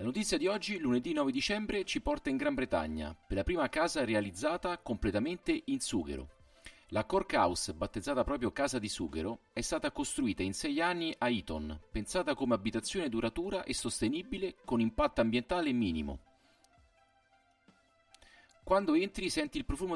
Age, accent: 40-59, native